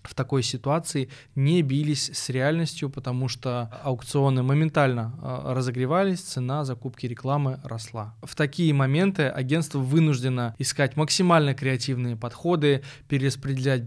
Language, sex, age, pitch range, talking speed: Russian, male, 20-39, 125-150 Hz, 110 wpm